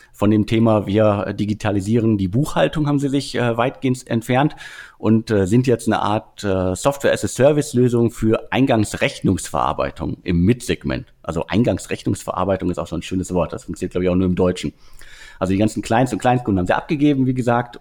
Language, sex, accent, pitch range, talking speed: German, male, German, 95-120 Hz, 175 wpm